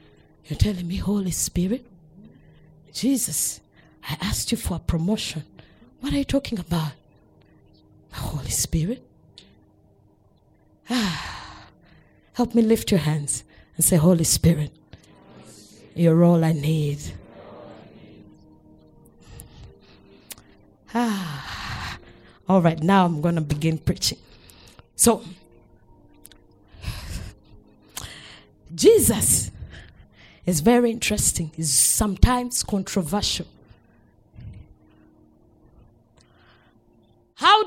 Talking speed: 80 wpm